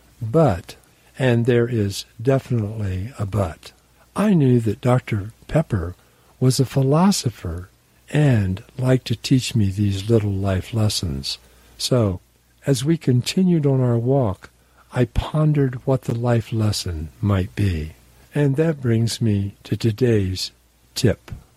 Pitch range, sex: 95-130 Hz, male